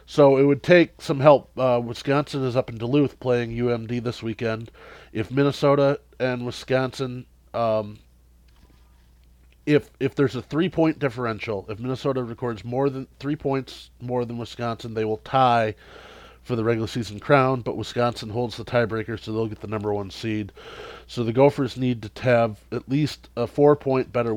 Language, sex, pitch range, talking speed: English, male, 100-120 Hz, 170 wpm